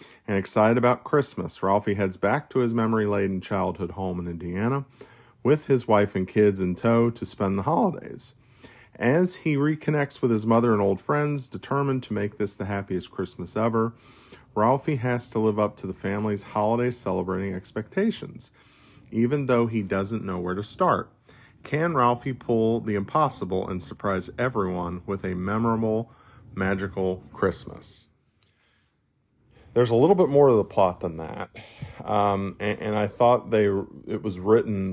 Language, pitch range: English, 95-115 Hz